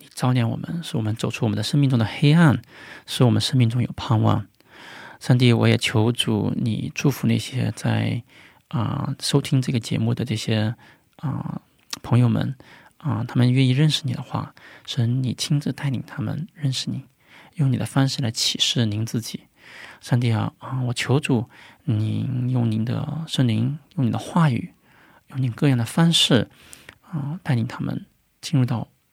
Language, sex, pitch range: Korean, male, 115-145 Hz